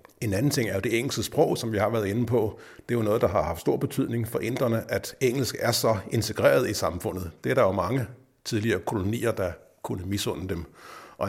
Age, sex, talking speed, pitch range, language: 60-79, male, 235 wpm, 105-130 Hz, Danish